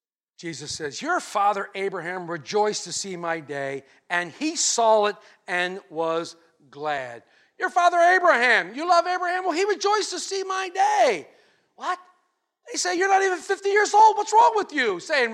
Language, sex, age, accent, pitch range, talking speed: English, male, 50-69, American, 225-325 Hz, 170 wpm